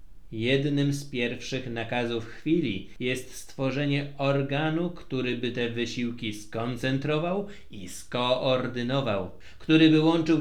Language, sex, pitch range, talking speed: Polish, male, 120-155 Hz, 105 wpm